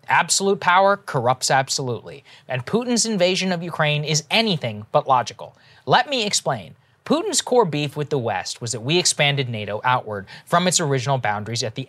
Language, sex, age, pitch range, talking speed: English, male, 20-39, 130-180 Hz, 170 wpm